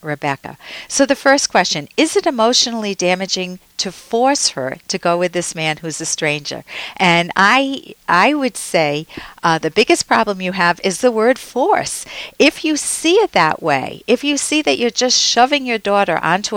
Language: English